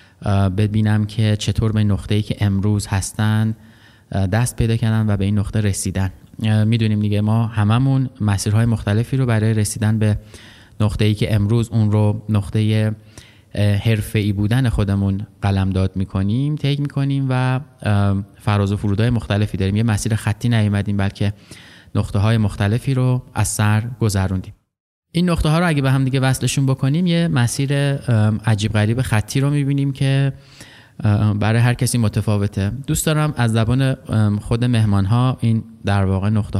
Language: Persian